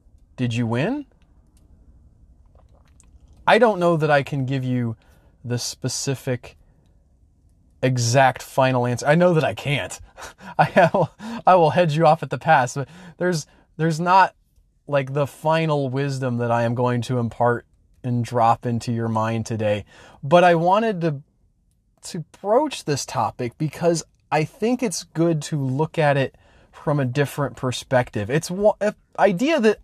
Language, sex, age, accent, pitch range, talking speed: English, male, 30-49, American, 115-165 Hz, 155 wpm